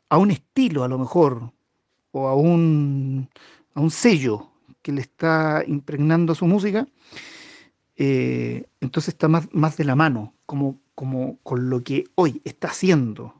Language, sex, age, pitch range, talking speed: Spanish, male, 40-59, 125-165 Hz, 155 wpm